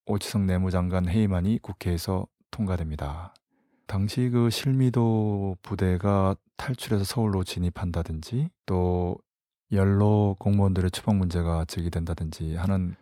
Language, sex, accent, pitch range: Korean, male, native, 90-110 Hz